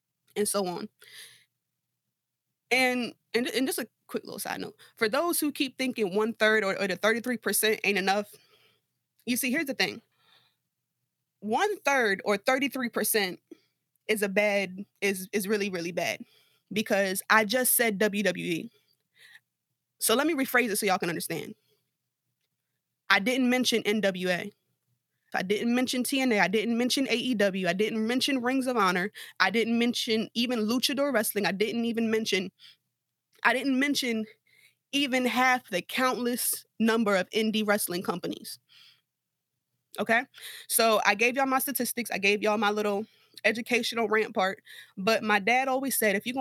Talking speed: 150 wpm